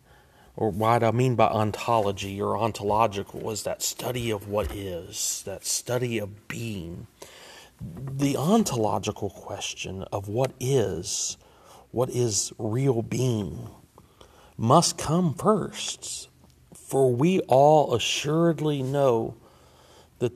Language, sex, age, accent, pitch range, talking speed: English, male, 40-59, American, 110-140 Hz, 110 wpm